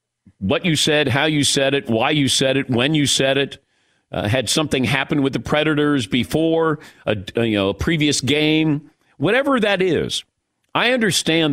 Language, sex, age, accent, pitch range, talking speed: English, male, 50-69, American, 125-165 Hz, 175 wpm